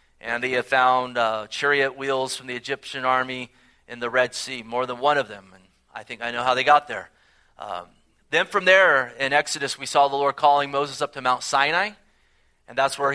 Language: English